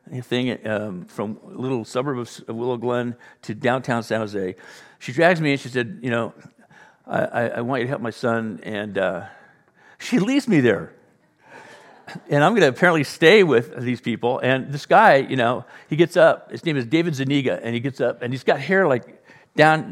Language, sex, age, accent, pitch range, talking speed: English, male, 50-69, American, 115-150 Hz, 205 wpm